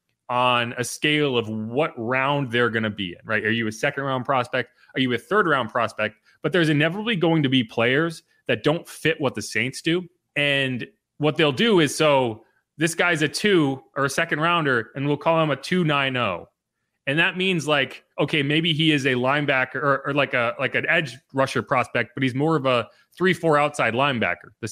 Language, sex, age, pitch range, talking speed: English, male, 30-49, 130-165 Hz, 210 wpm